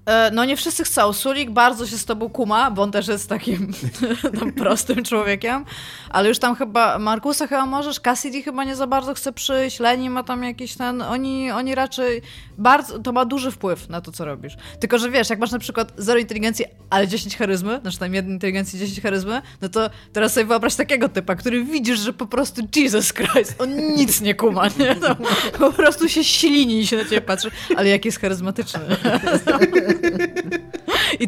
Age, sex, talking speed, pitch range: 20-39, female, 195 wpm, 205-265 Hz